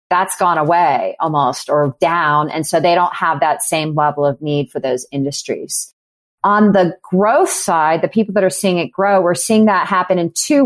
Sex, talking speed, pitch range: female, 205 wpm, 155-190 Hz